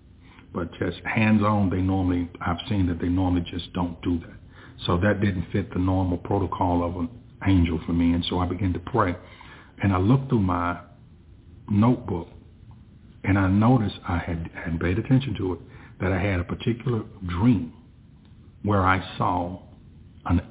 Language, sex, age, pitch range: English, male, 60-79, 85-105 Hz